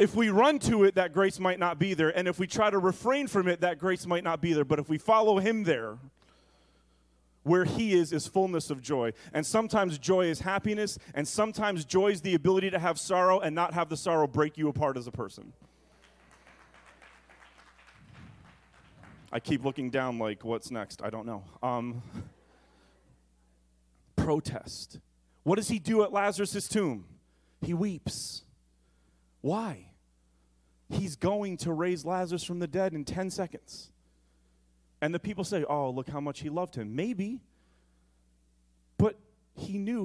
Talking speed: 170 wpm